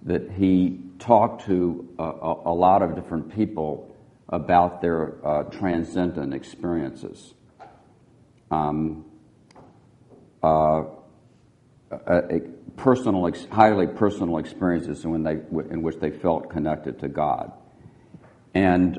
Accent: American